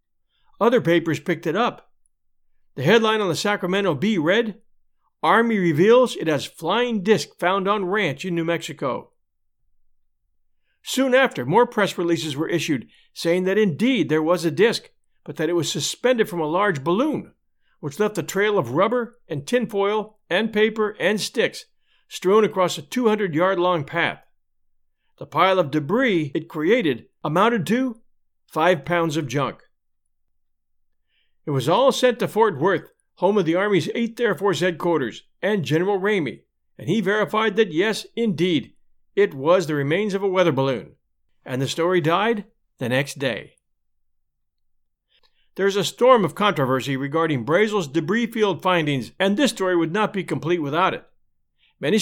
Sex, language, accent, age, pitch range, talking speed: male, English, American, 50-69, 160-215 Hz, 155 wpm